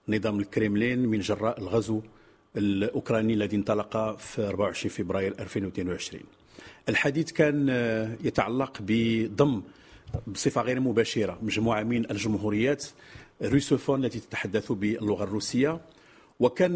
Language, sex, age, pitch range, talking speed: English, male, 50-69, 110-145 Hz, 100 wpm